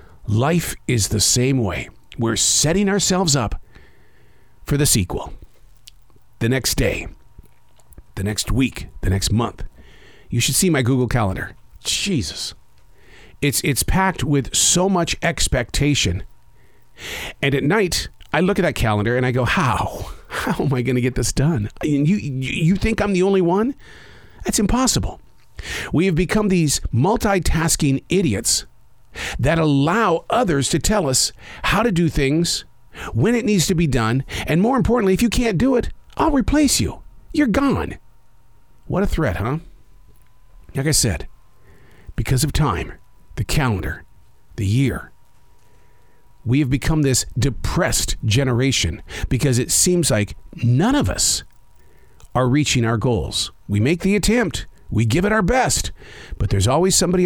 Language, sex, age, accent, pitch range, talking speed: English, male, 50-69, American, 115-180 Hz, 150 wpm